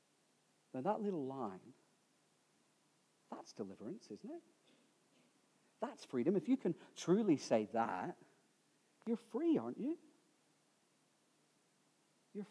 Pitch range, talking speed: 125-160 Hz, 100 wpm